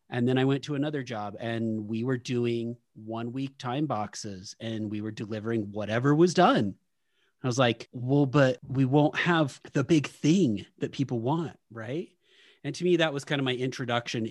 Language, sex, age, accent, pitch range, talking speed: English, male, 30-49, American, 115-140 Hz, 195 wpm